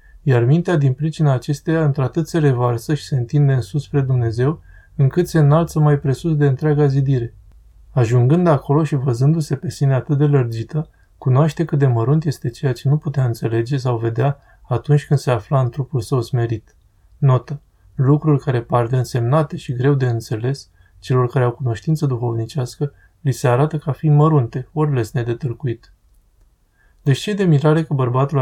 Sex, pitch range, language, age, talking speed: male, 120-145 Hz, Romanian, 20-39, 170 wpm